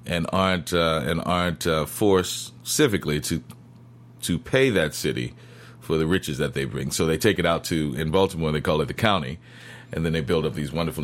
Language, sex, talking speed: English, male, 210 wpm